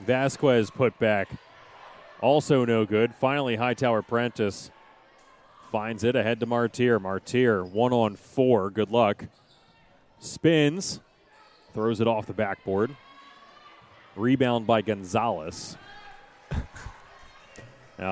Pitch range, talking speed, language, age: 110-145 Hz, 100 wpm, English, 30-49